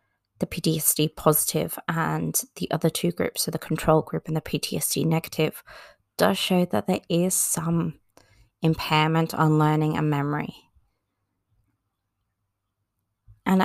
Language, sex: English, female